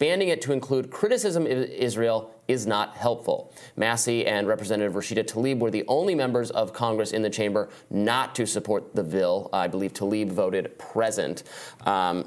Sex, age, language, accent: male, 20-39, English, American